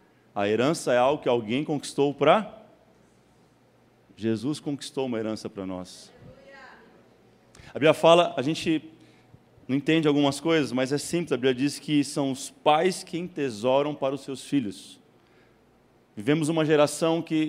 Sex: male